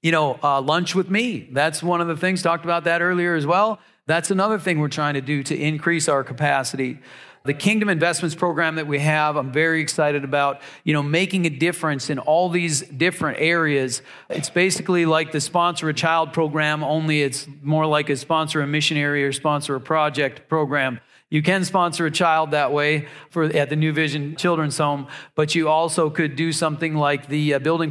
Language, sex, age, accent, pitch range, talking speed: English, male, 40-59, American, 150-175 Hz, 200 wpm